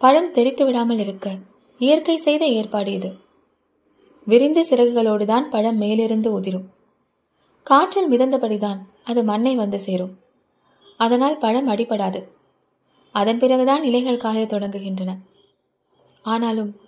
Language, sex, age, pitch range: Tamil, female, 20-39, 215-265 Hz